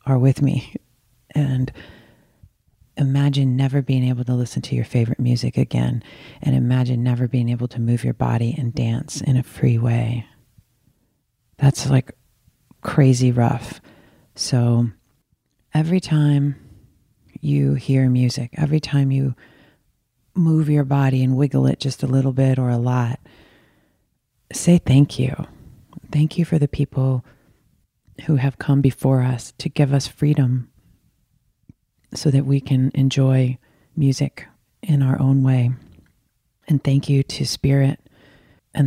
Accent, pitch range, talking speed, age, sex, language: American, 120-140 Hz, 135 wpm, 30-49, female, English